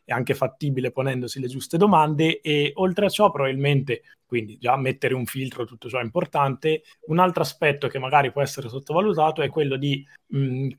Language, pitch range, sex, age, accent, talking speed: Italian, 125-155 Hz, male, 20-39, native, 185 wpm